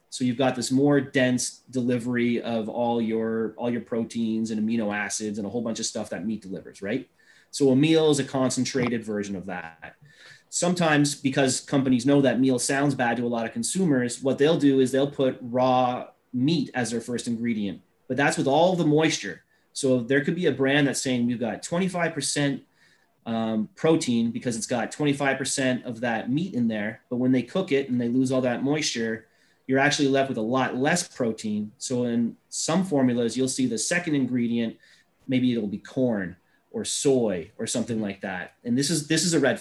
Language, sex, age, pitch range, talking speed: English, male, 30-49, 115-140 Hz, 200 wpm